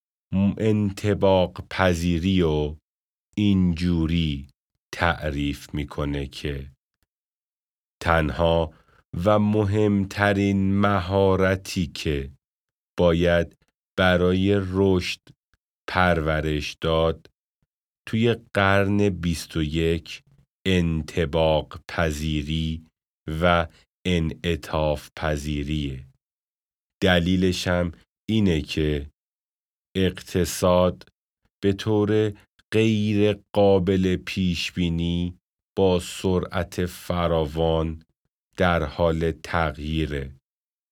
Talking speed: 60 wpm